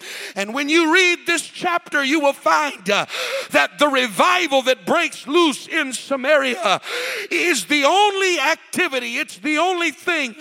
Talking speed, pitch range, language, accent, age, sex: 155 wpm, 255-325 Hz, English, American, 50-69, male